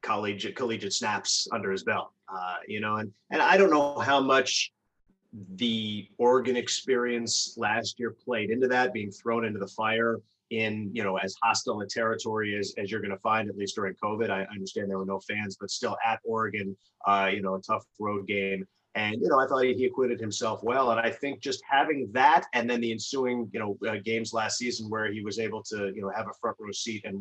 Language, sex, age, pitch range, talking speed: English, male, 30-49, 100-120 Hz, 225 wpm